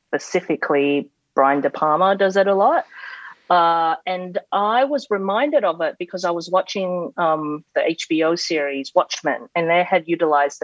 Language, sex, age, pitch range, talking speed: English, female, 30-49, 150-185 Hz, 160 wpm